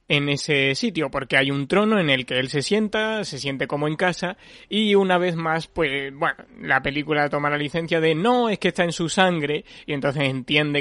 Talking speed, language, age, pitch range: 220 wpm, Spanish, 30-49, 140-175 Hz